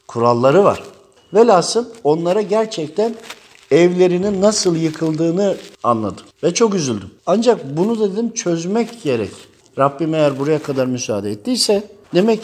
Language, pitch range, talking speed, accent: Turkish, 135-205 Hz, 125 wpm, native